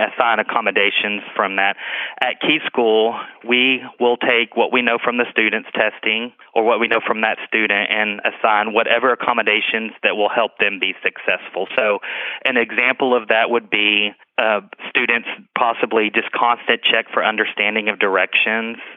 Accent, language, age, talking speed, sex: American, English, 30-49, 160 wpm, male